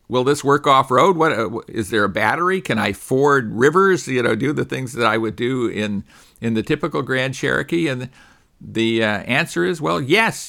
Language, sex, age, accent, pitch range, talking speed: English, male, 50-69, American, 115-145 Hz, 205 wpm